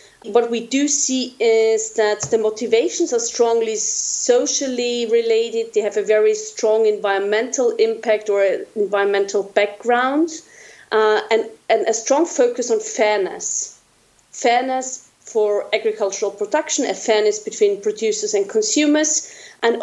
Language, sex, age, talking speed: English, female, 30-49, 125 wpm